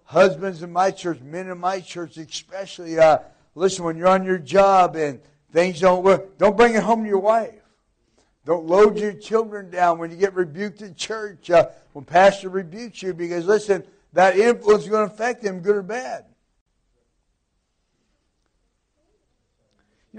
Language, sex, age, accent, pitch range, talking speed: English, male, 60-79, American, 160-205 Hz, 165 wpm